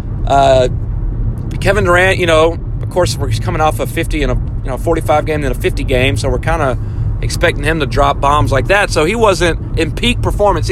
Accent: American